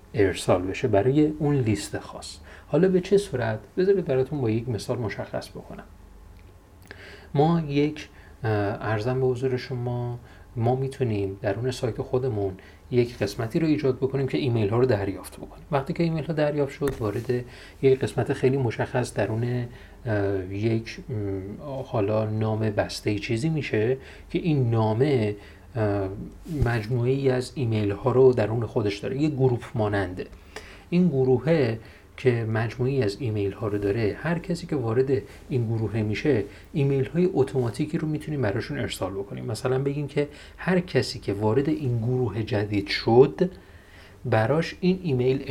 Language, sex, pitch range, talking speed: Persian, male, 100-135 Hz, 145 wpm